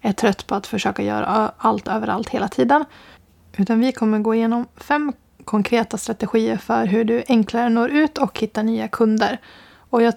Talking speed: 175 wpm